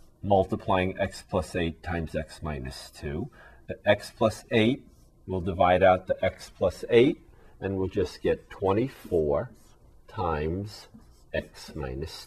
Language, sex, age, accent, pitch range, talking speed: English, male, 40-59, American, 80-105 Hz, 130 wpm